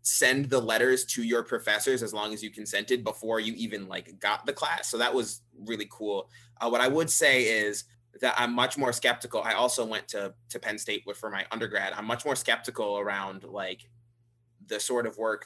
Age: 20-39